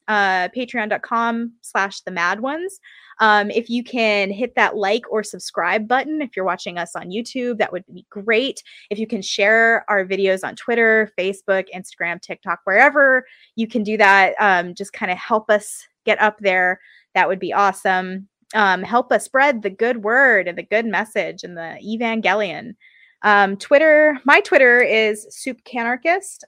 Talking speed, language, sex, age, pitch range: 170 wpm, English, female, 20-39, 195-245 Hz